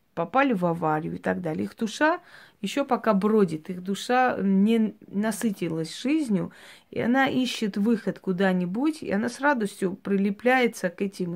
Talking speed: 150 wpm